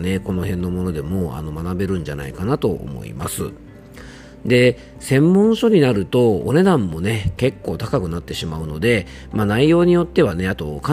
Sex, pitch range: male, 85-120 Hz